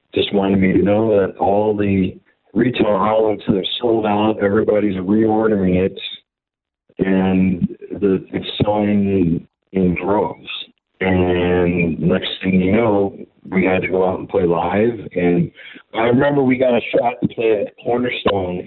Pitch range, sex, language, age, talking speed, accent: 95-110 Hz, male, English, 50-69, 150 wpm, American